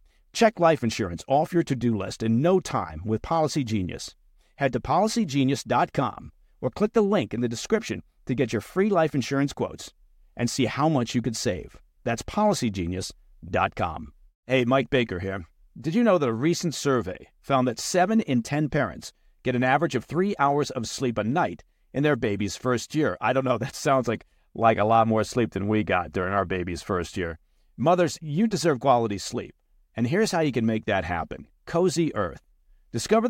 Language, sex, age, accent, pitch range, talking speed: English, male, 50-69, American, 105-155 Hz, 190 wpm